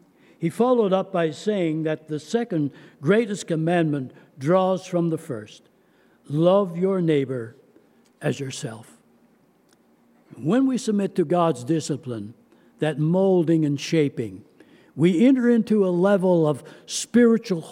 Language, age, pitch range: English, 60-79, 165-215 Hz